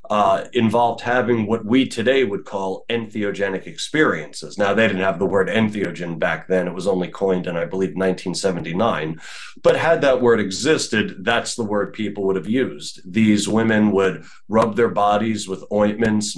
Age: 30-49